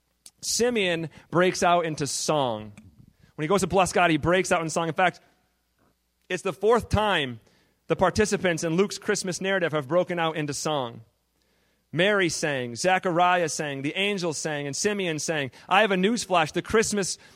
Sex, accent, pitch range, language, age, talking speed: male, American, 145-215 Hz, English, 40-59, 170 wpm